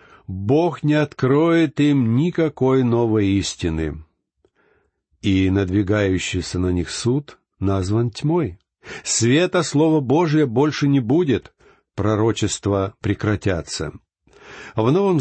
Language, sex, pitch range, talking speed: Russian, male, 100-140 Hz, 95 wpm